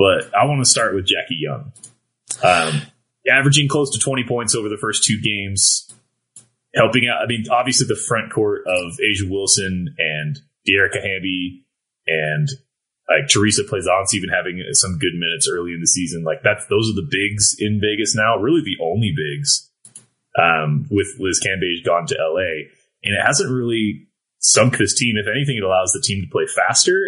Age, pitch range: 30-49, 95-130 Hz